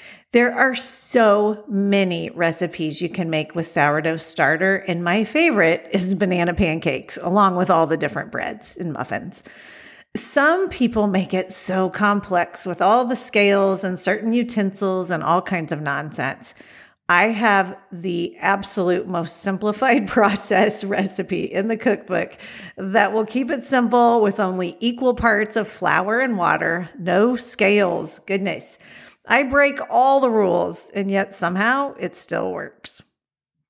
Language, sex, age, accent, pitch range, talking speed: English, female, 50-69, American, 185-245 Hz, 145 wpm